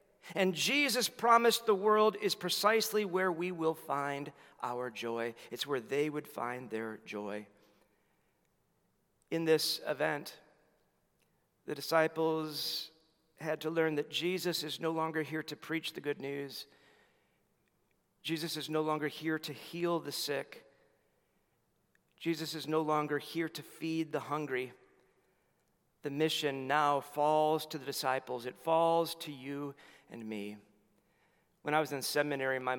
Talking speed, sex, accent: 140 wpm, male, American